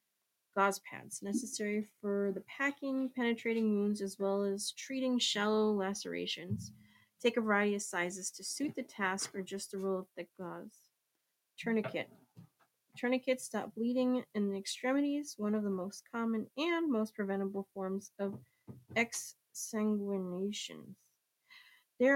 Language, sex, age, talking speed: English, female, 30-49, 135 wpm